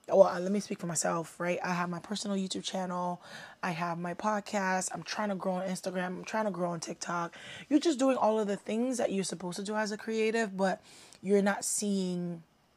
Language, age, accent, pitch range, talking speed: English, 20-39, American, 175-220 Hz, 225 wpm